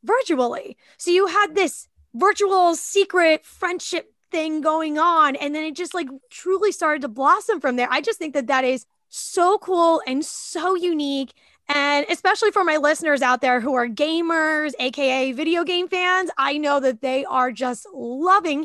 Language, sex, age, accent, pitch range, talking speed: English, female, 10-29, American, 260-345 Hz, 175 wpm